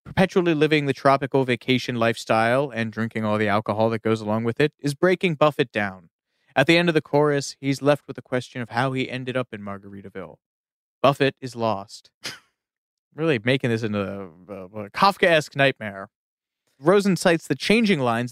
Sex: male